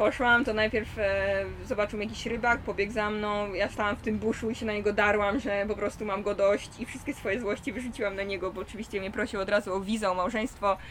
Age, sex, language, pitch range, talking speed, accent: 20-39, female, Polish, 185-240 Hz, 235 wpm, native